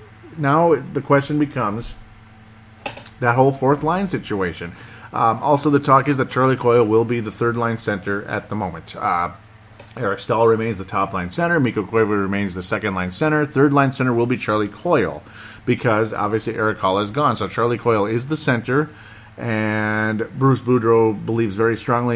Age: 40-59